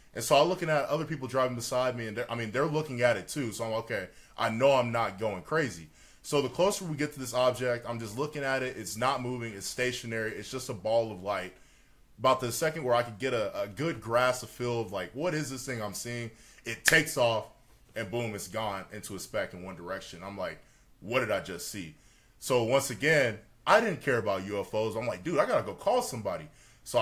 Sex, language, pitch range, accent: male, English, 110-140 Hz, American